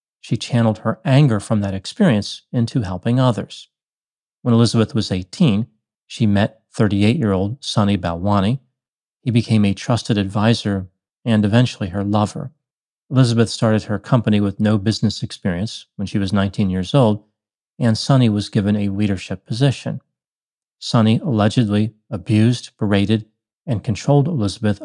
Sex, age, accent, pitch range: male, 40-59, American, 100-120 Hz